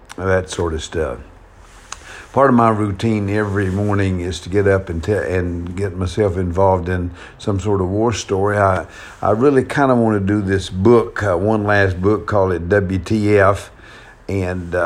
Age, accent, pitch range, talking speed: 50-69, American, 90-105 Hz, 180 wpm